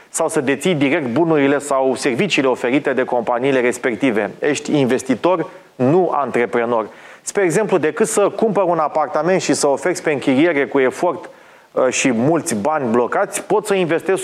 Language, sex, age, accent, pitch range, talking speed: Romanian, male, 30-49, native, 135-170 Hz, 150 wpm